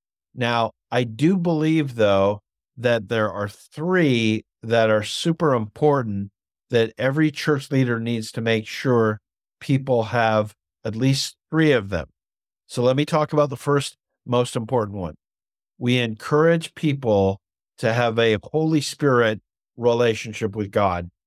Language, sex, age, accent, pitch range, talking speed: English, male, 50-69, American, 110-135 Hz, 140 wpm